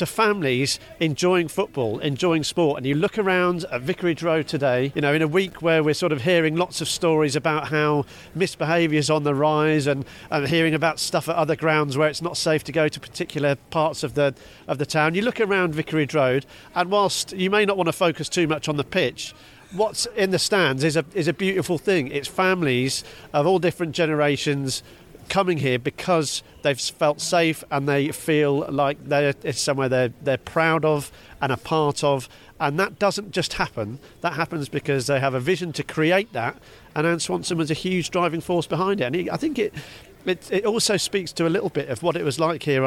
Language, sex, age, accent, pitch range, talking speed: English, male, 40-59, British, 145-180 Hz, 215 wpm